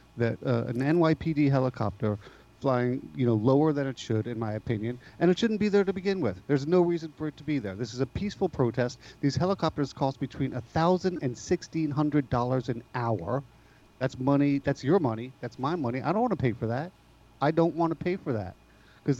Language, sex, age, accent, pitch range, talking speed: English, male, 40-59, American, 120-145 Hz, 215 wpm